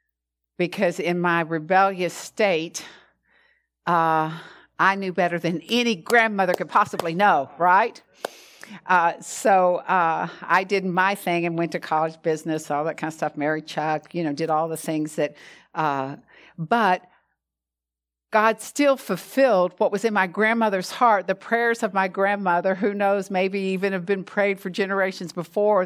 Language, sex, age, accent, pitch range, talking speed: English, female, 60-79, American, 155-200 Hz, 160 wpm